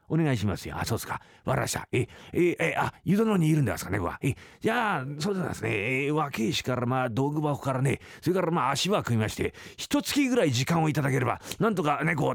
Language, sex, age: Japanese, male, 40-59